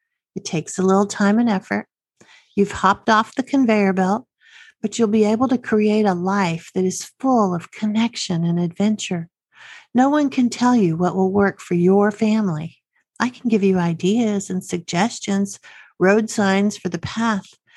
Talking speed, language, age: 170 wpm, English, 50-69